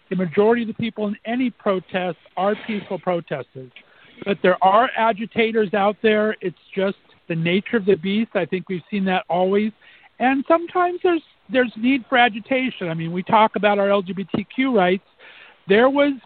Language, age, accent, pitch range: English, 50-69, American, 180-220 Hz